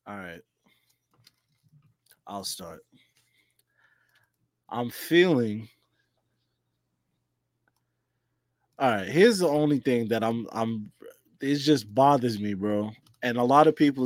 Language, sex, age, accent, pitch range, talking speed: English, male, 20-39, American, 110-160 Hz, 105 wpm